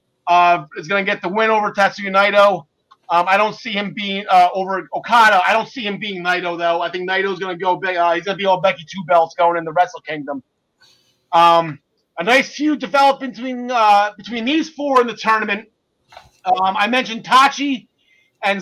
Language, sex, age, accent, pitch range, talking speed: English, male, 30-49, American, 180-235 Hz, 210 wpm